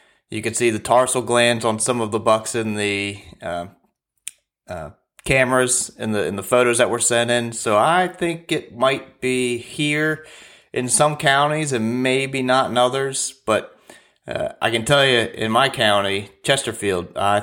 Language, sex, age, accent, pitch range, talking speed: English, male, 30-49, American, 100-125 Hz, 175 wpm